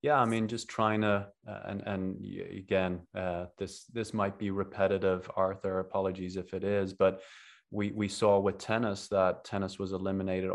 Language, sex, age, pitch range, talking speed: English, male, 20-39, 90-105 Hz, 175 wpm